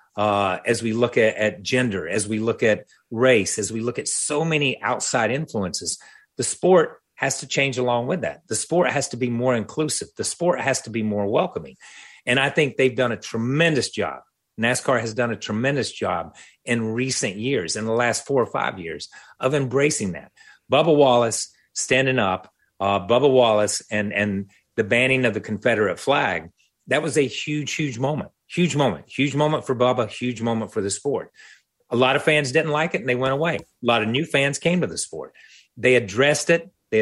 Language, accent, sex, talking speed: English, American, male, 205 wpm